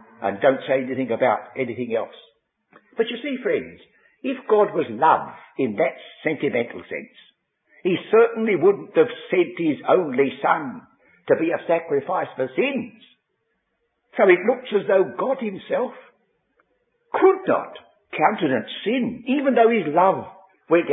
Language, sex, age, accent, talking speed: English, male, 60-79, British, 140 wpm